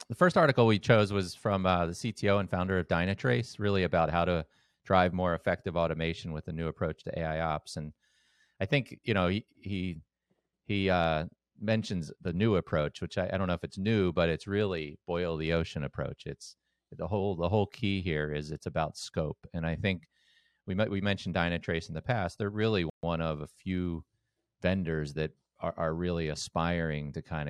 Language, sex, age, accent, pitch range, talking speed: English, male, 30-49, American, 75-90 Hz, 200 wpm